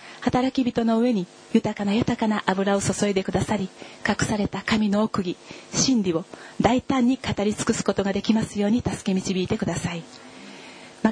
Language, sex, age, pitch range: Japanese, female, 40-59, 195-235 Hz